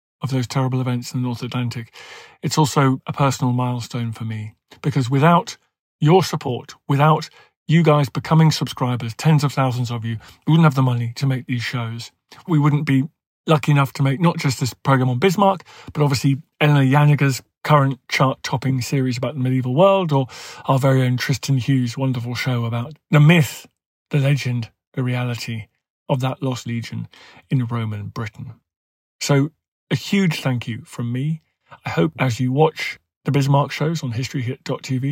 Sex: male